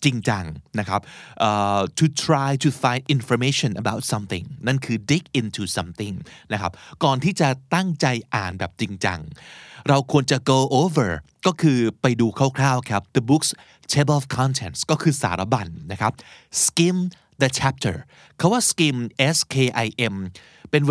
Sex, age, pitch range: male, 30-49, 110-150 Hz